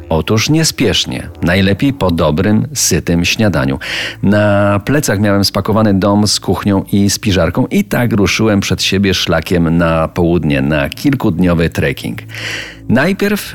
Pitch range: 85-105 Hz